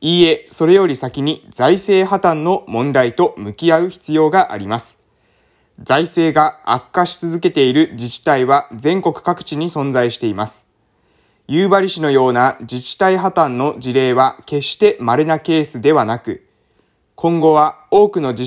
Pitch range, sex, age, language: 130-170 Hz, male, 20-39, Japanese